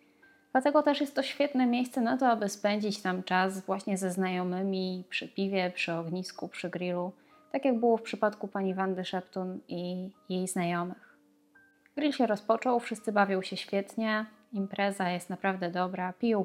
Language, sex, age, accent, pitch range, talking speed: Polish, female, 20-39, native, 185-235 Hz, 160 wpm